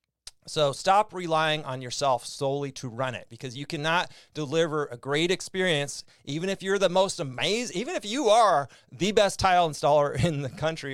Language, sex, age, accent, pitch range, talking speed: English, male, 30-49, American, 130-160 Hz, 180 wpm